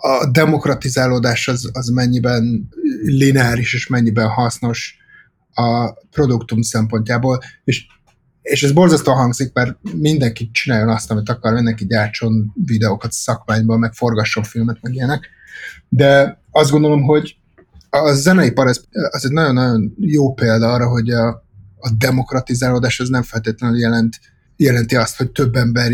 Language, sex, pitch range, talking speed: Hungarian, male, 115-140 Hz, 135 wpm